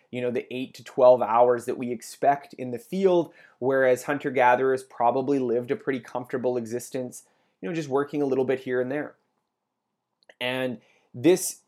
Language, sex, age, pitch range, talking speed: English, male, 20-39, 120-145 Hz, 170 wpm